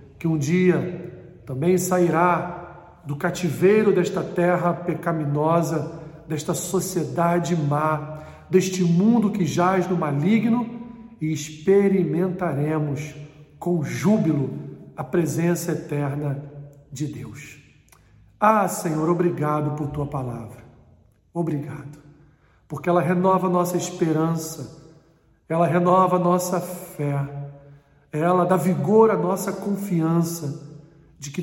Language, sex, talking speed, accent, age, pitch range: Portuguese, male, 100 wpm, Brazilian, 50-69, 150-185 Hz